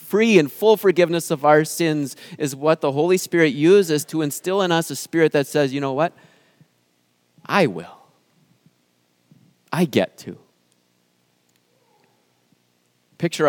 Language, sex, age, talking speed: English, male, 30-49, 135 wpm